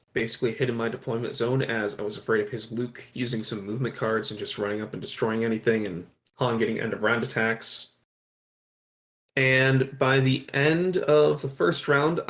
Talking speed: 180 wpm